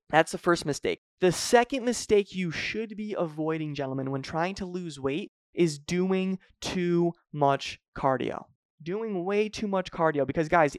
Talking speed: 160 wpm